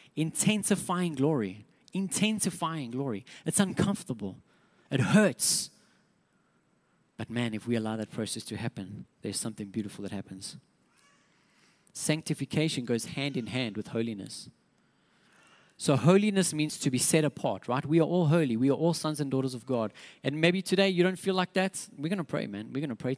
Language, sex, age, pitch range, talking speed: English, male, 30-49, 120-165 Hz, 170 wpm